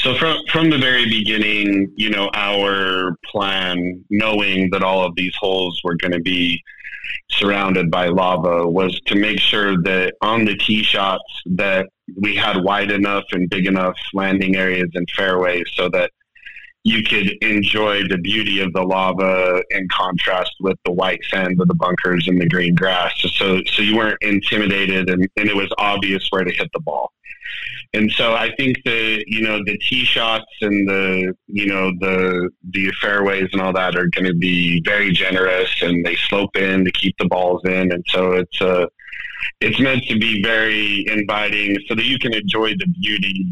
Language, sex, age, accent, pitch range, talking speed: English, male, 30-49, American, 95-105 Hz, 185 wpm